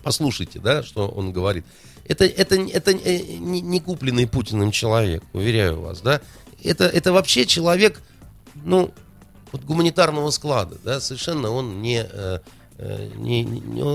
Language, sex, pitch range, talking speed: Russian, male, 110-155 Hz, 120 wpm